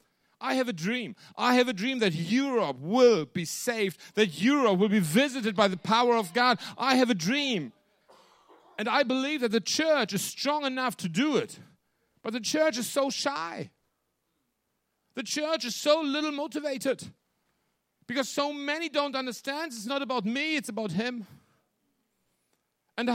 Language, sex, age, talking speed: Danish, male, 50-69, 165 wpm